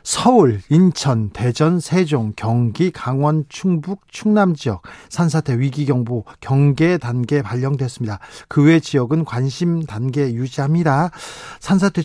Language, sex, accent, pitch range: Korean, male, native, 140-190 Hz